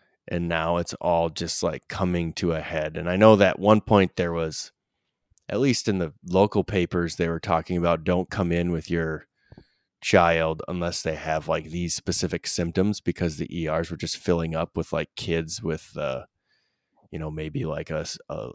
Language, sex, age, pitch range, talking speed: English, male, 20-39, 80-95 Hz, 190 wpm